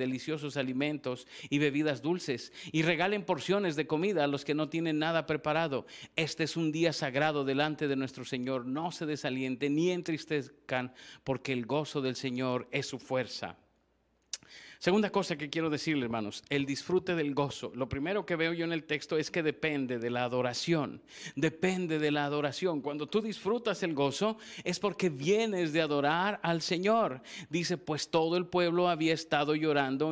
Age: 50-69